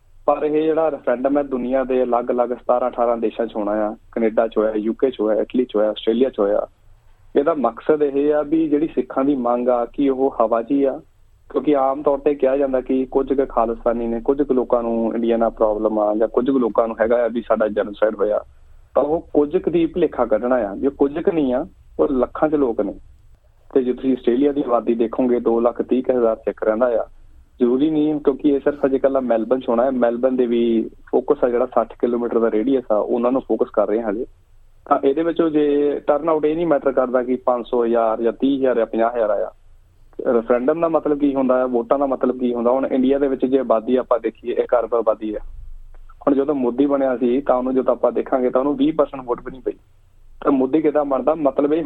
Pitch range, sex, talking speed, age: 115-140 Hz, male, 220 wpm, 30-49